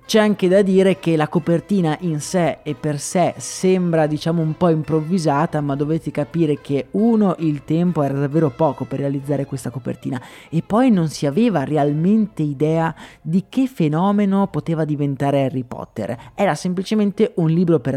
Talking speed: 165 wpm